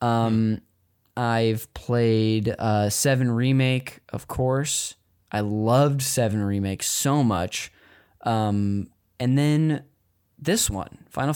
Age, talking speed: 10-29, 105 wpm